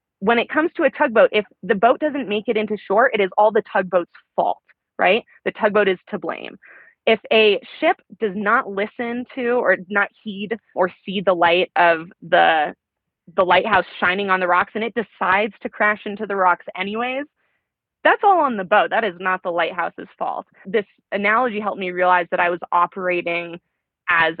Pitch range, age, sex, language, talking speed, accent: 175-215 Hz, 20-39, female, English, 190 wpm, American